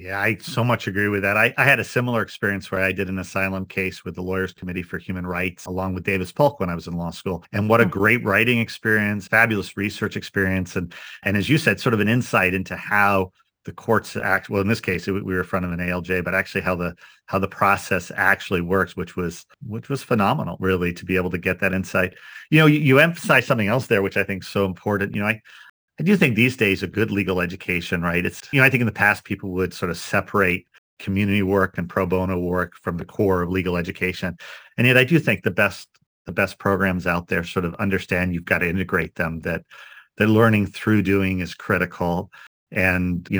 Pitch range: 90-105 Hz